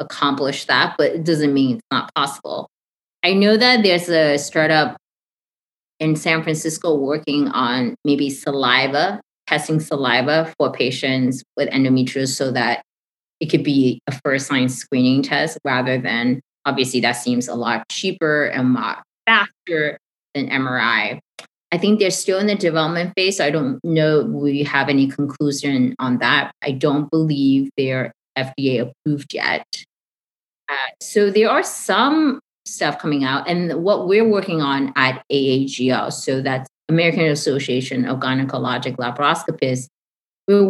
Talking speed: 145 wpm